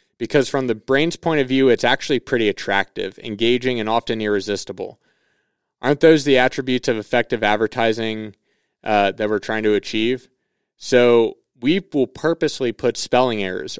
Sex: male